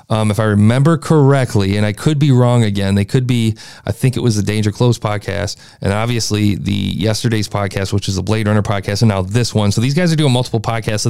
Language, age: English, 30-49